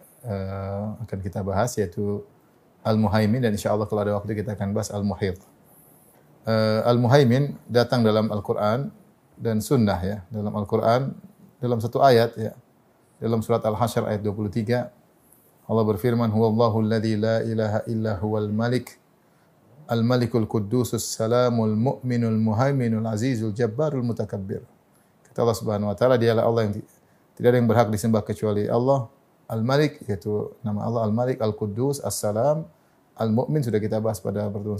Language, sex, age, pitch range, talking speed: Indonesian, male, 30-49, 110-130 Hz, 145 wpm